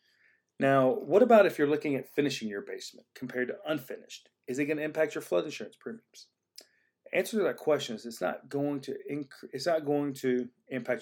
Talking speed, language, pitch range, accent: 205 wpm, English, 120-145 Hz, American